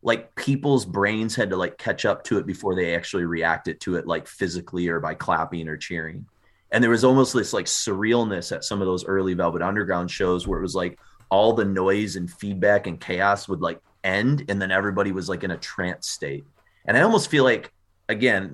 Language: English